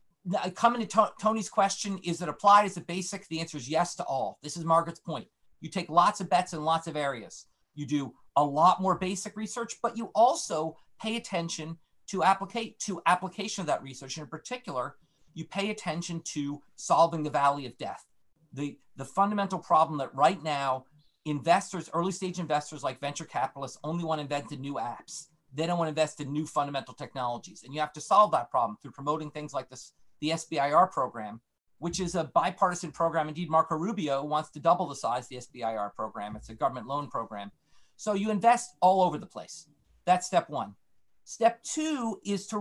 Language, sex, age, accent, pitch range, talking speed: English, male, 40-59, American, 145-180 Hz, 195 wpm